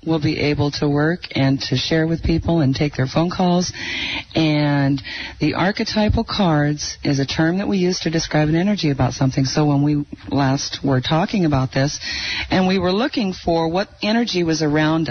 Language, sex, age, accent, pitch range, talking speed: English, female, 40-59, American, 130-160 Hz, 190 wpm